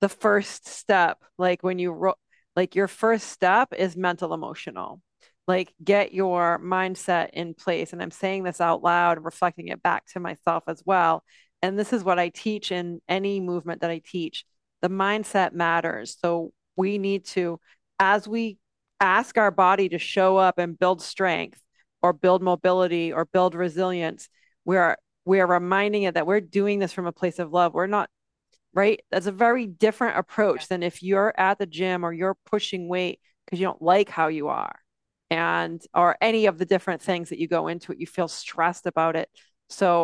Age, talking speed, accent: 40-59, 190 wpm, American